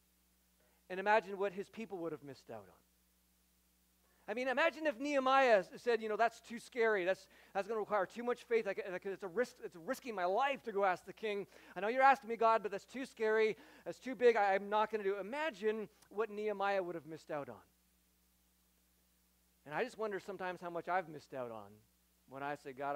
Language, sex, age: English, male, 40-59